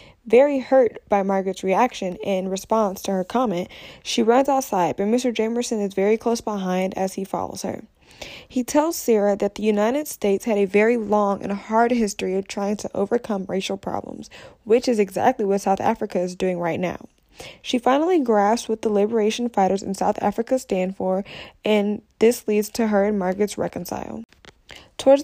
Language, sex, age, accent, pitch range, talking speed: English, female, 10-29, American, 200-245 Hz, 180 wpm